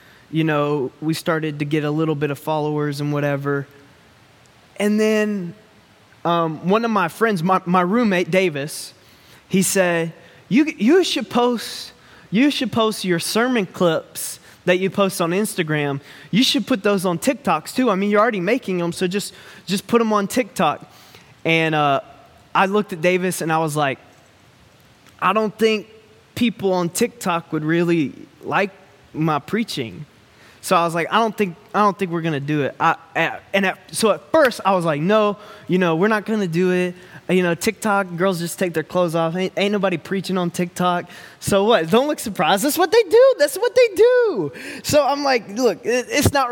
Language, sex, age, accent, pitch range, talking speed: English, male, 20-39, American, 165-225 Hz, 190 wpm